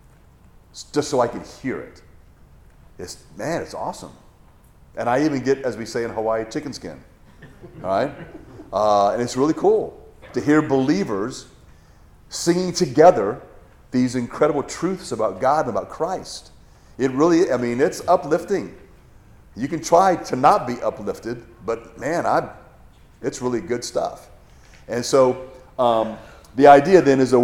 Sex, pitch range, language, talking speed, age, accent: male, 110-140 Hz, English, 150 wpm, 40-59, American